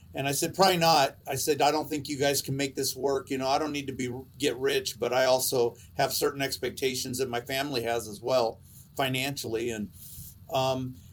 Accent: American